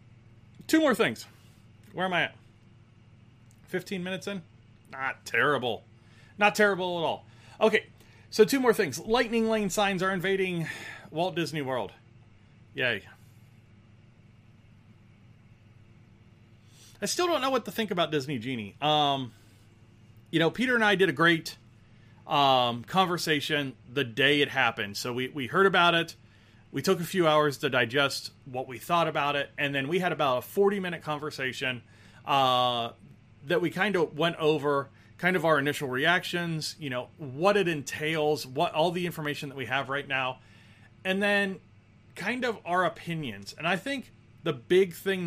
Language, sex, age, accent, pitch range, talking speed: English, male, 30-49, American, 115-175 Hz, 160 wpm